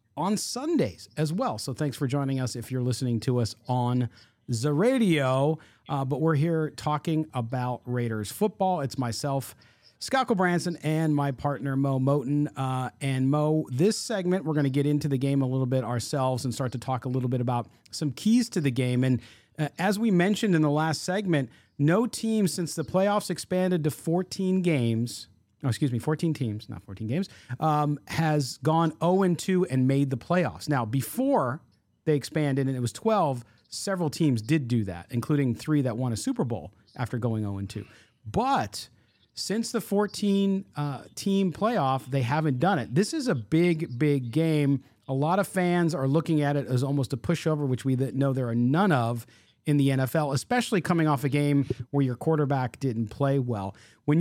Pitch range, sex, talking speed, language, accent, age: 125-160 Hz, male, 190 wpm, English, American, 40-59